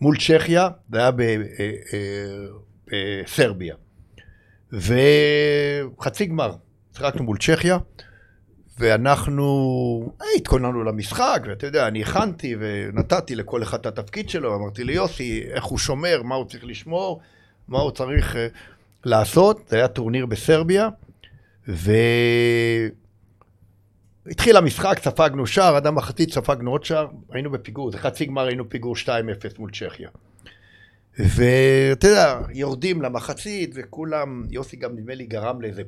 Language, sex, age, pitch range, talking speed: Hebrew, male, 60-79, 105-145 Hz, 125 wpm